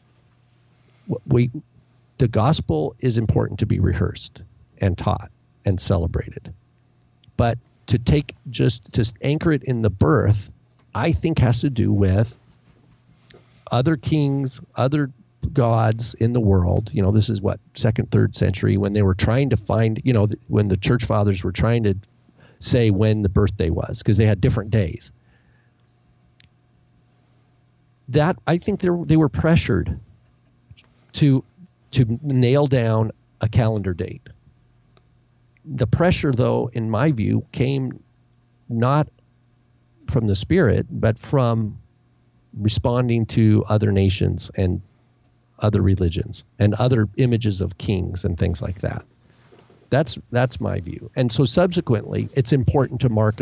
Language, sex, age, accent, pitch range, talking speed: English, male, 50-69, American, 105-130 Hz, 135 wpm